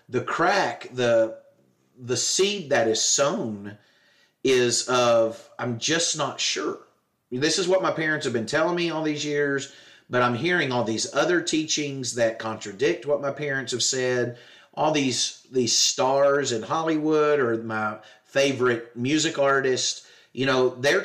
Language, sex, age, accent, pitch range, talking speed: English, male, 30-49, American, 120-155 Hz, 155 wpm